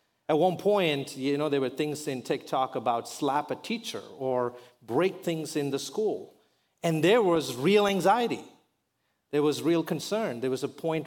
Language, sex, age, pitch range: English, male, 40-59, 130-165 Hz